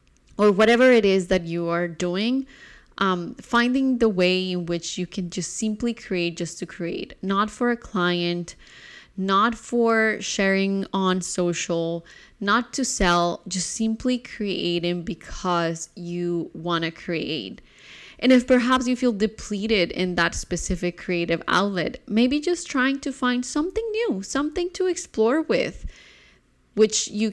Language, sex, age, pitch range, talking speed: English, female, 20-39, 175-225 Hz, 145 wpm